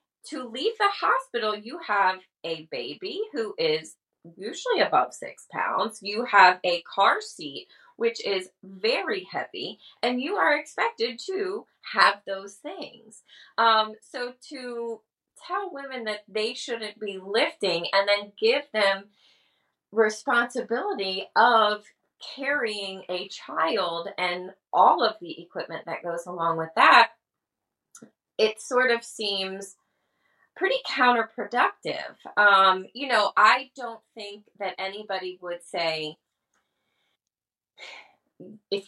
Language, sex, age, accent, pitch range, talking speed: English, female, 20-39, American, 175-235 Hz, 120 wpm